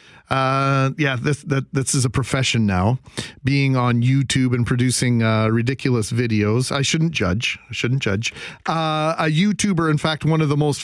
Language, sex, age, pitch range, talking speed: English, male, 40-59, 125-160 Hz, 175 wpm